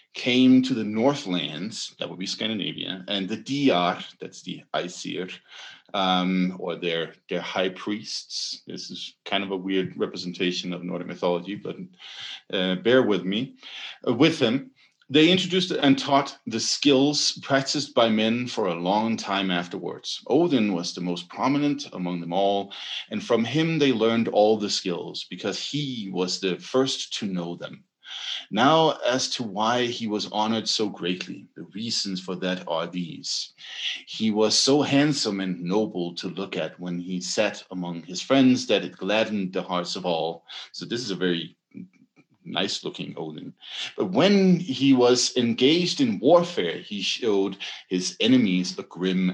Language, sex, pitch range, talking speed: English, male, 90-135 Hz, 165 wpm